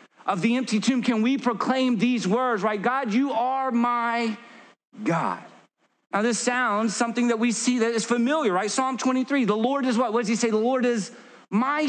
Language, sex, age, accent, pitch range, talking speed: English, male, 40-59, American, 230-280 Hz, 200 wpm